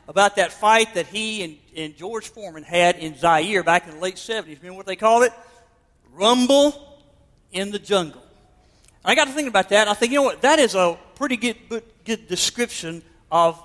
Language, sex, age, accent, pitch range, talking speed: English, male, 50-69, American, 165-230 Hz, 200 wpm